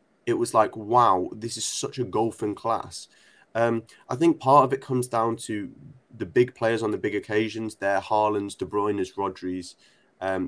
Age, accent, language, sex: 20-39, British, English, male